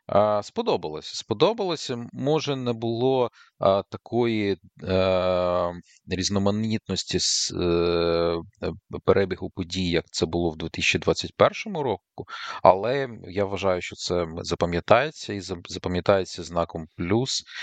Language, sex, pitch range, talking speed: Ukrainian, male, 85-100 Hz, 95 wpm